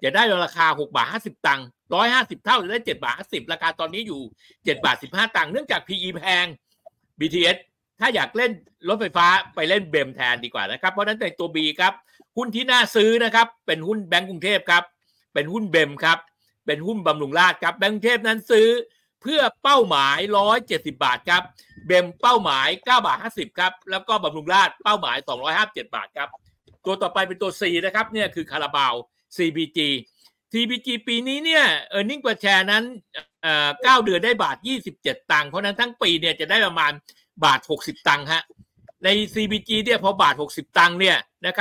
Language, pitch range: Thai, 170-230 Hz